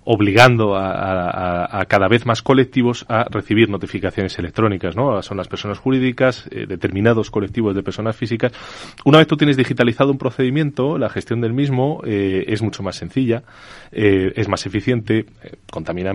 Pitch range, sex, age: 95-120 Hz, male, 30-49